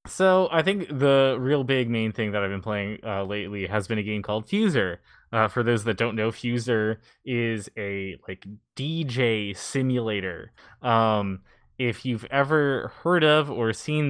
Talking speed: 170 wpm